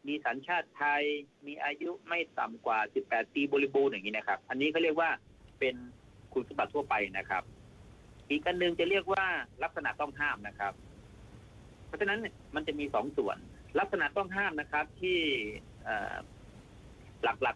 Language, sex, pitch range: Thai, male, 130-170 Hz